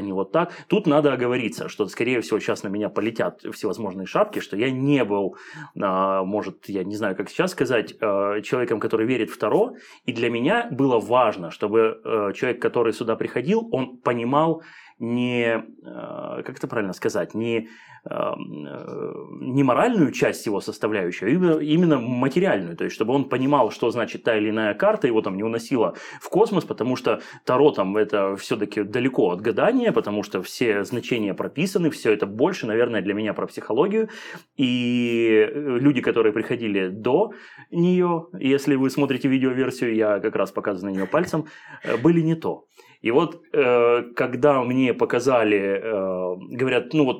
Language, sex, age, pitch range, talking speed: Russian, male, 30-49, 105-145 Hz, 160 wpm